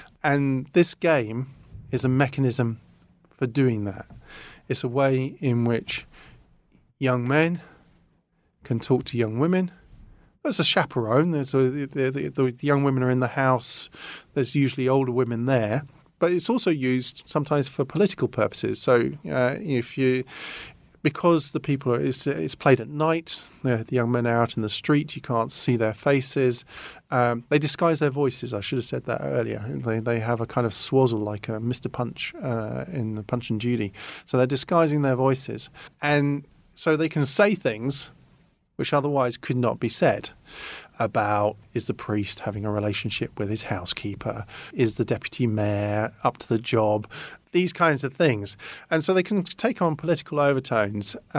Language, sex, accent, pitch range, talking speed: English, male, British, 115-145 Hz, 175 wpm